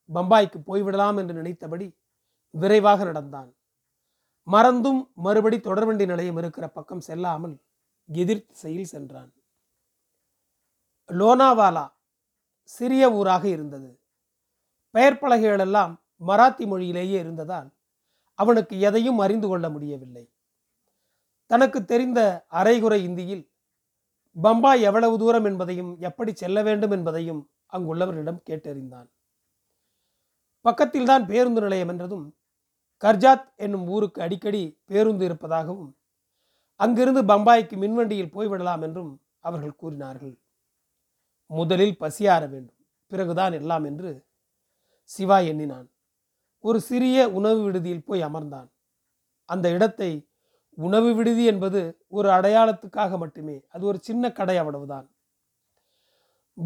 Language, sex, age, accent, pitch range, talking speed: Tamil, male, 30-49, native, 160-215 Hz, 95 wpm